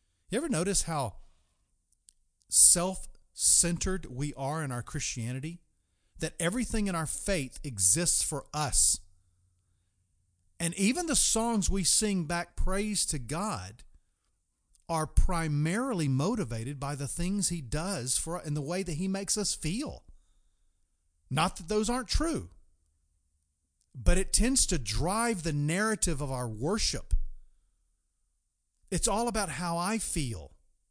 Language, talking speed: English, 130 wpm